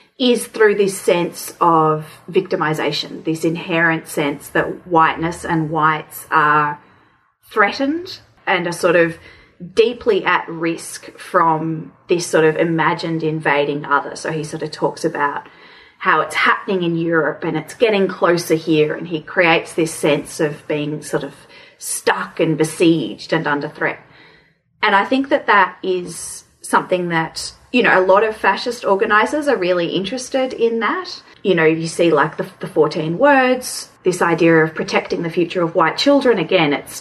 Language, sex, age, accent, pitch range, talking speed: English, female, 30-49, Australian, 160-200 Hz, 160 wpm